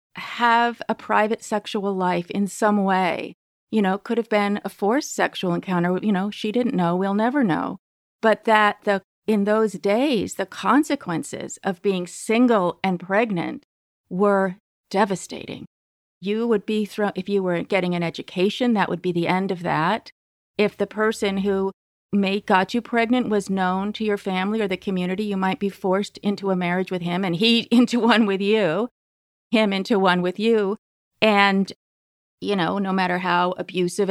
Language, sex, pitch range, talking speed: English, female, 190-230 Hz, 175 wpm